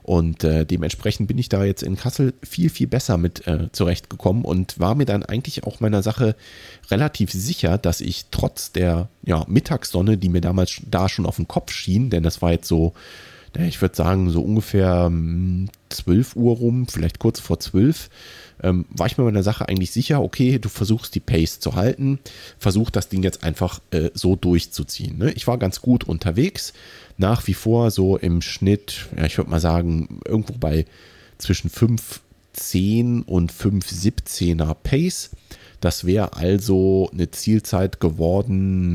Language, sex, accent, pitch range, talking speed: German, male, German, 85-115 Hz, 165 wpm